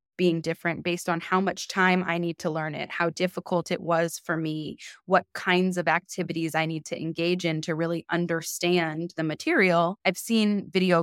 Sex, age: female, 20-39